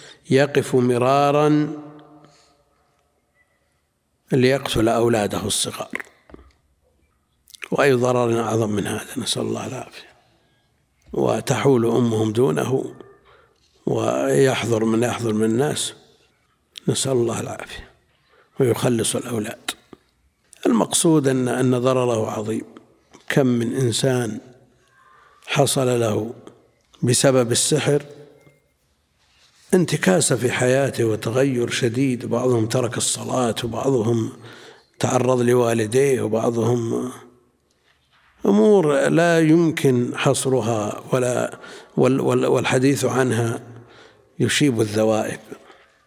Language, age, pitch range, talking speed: Arabic, 60-79, 115-140 Hz, 80 wpm